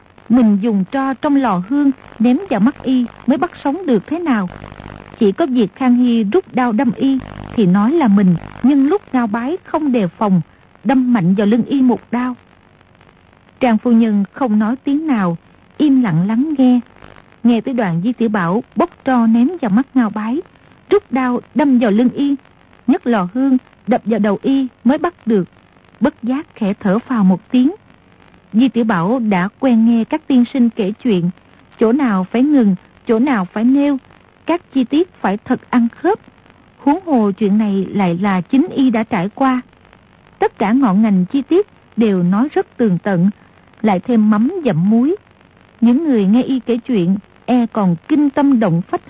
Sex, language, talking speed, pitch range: female, Vietnamese, 190 wpm, 210-270 Hz